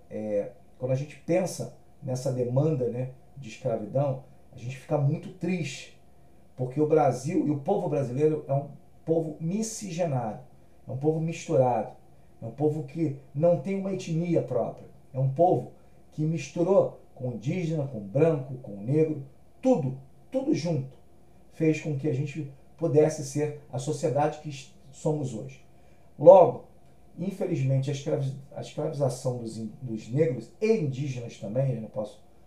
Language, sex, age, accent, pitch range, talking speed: Portuguese, male, 40-59, Brazilian, 130-165 Hz, 145 wpm